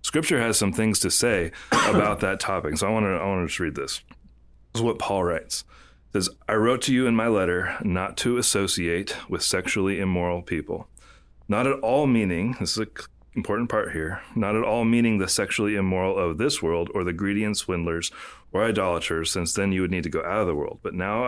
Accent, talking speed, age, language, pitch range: American, 225 wpm, 30-49, English, 85-105 Hz